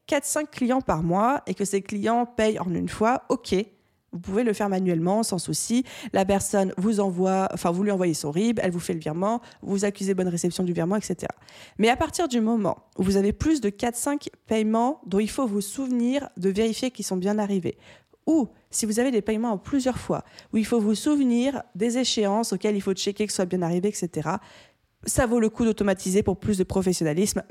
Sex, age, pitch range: female, 20-39, 190-230 Hz